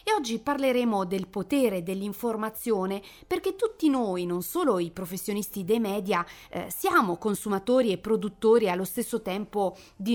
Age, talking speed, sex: 30-49, 140 wpm, female